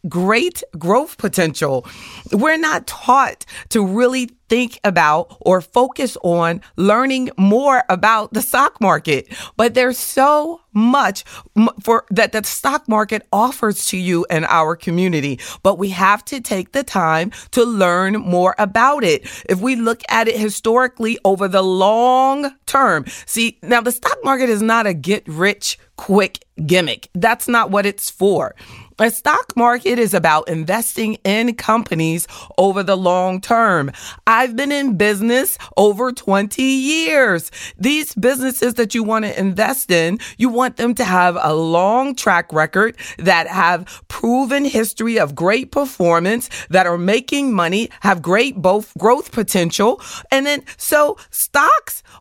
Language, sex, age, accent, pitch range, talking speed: English, female, 30-49, American, 185-250 Hz, 145 wpm